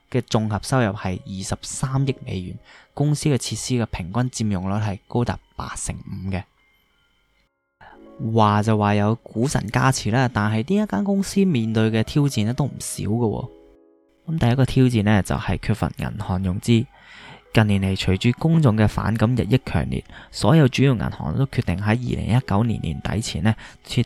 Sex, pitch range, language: male, 100-125 Hz, Chinese